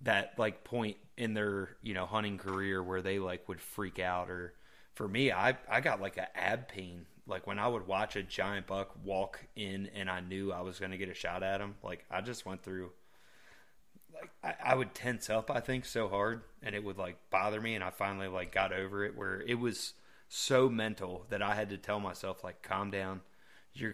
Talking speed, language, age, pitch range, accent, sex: 225 wpm, English, 20-39, 95-110 Hz, American, male